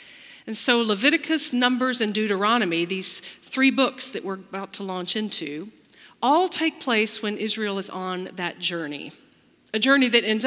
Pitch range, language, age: 195-265 Hz, English, 40-59